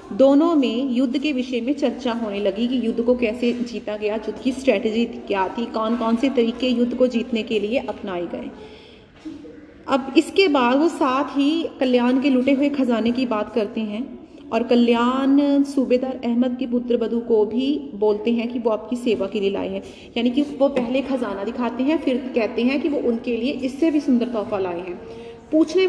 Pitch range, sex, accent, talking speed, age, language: 225-275 Hz, female, native, 200 wpm, 30-49, Hindi